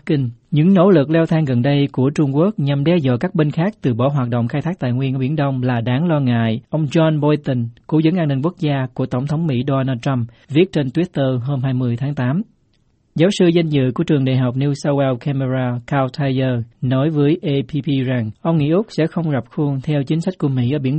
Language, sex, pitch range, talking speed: Vietnamese, male, 130-155 Hz, 245 wpm